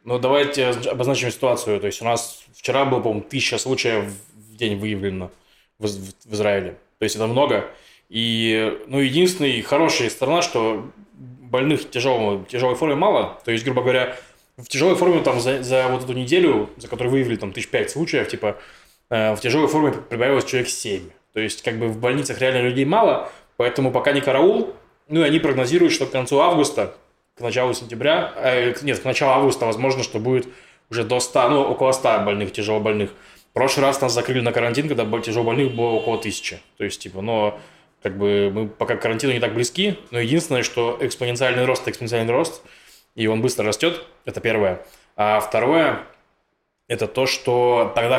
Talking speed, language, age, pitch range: 180 wpm, Russian, 20-39, 110-135 Hz